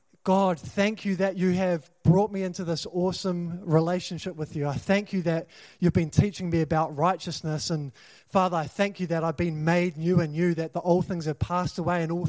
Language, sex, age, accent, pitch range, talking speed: English, male, 20-39, Australian, 155-190 Hz, 220 wpm